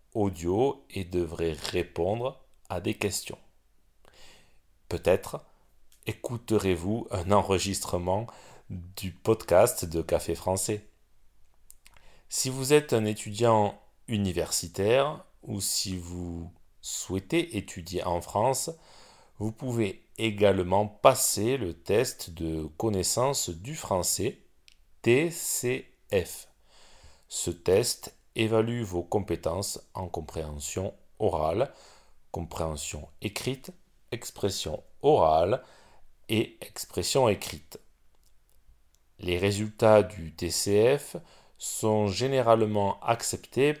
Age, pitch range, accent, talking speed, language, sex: 40-59, 90-120 Hz, French, 85 wpm, French, male